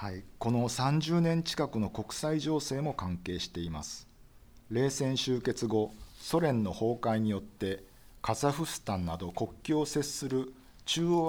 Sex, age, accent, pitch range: male, 50-69, native, 95-130 Hz